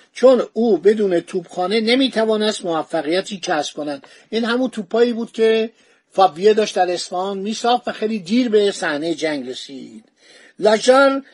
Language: Persian